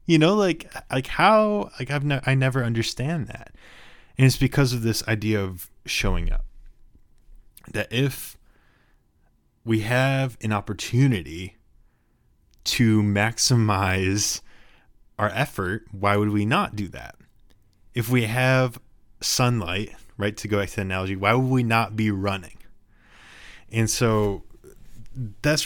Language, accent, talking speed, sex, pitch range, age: English, American, 135 wpm, male, 100-125 Hz, 20-39